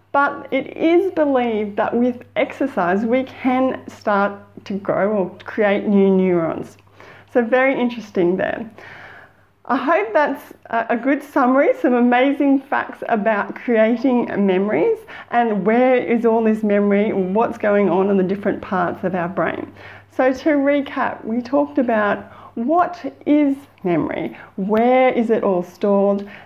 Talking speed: 140 wpm